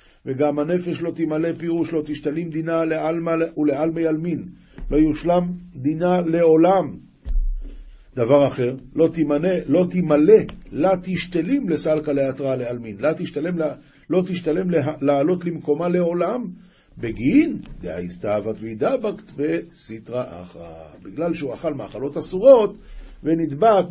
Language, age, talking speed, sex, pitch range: Hebrew, 50-69, 115 wpm, male, 145-190 Hz